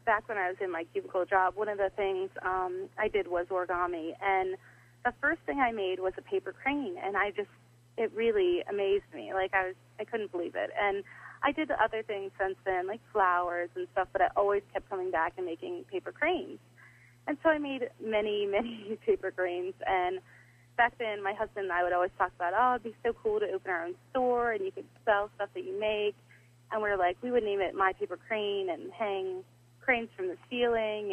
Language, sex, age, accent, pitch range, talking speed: English, female, 30-49, American, 180-245 Hz, 225 wpm